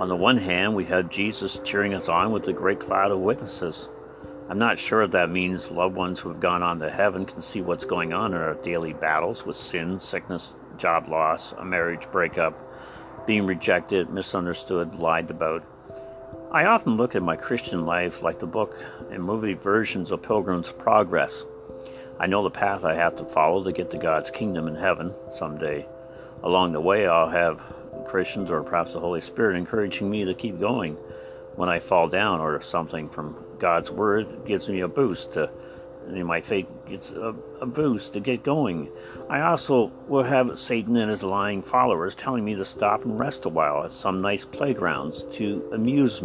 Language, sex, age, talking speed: English, male, 60-79, 190 wpm